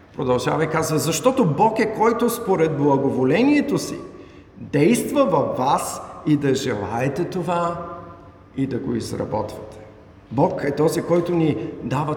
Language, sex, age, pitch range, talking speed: Bulgarian, male, 50-69, 125-175 Hz, 135 wpm